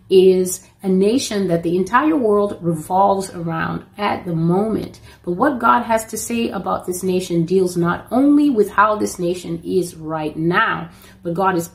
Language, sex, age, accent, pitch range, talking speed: English, female, 30-49, American, 170-210 Hz, 175 wpm